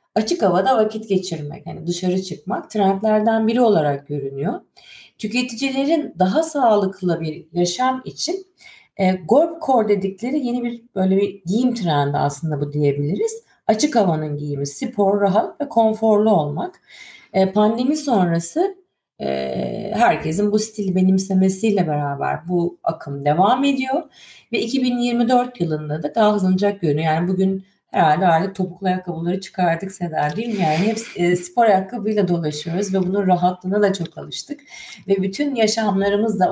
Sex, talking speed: female, 130 wpm